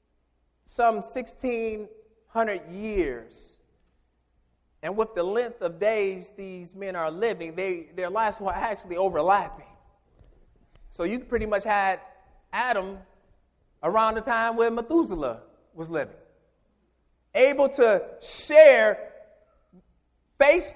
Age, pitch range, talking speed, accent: 30-49, 185-300 Hz, 105 wpm, American